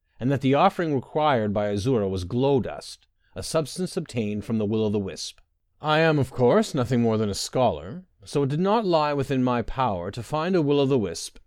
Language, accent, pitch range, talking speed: English, American, 105-145 Hz, 195 wpm